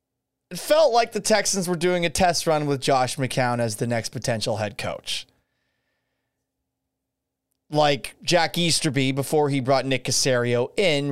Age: 30-49